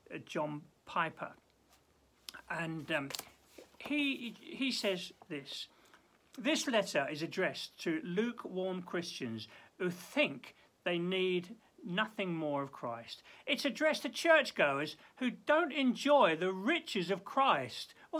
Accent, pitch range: British, 145-240 Hz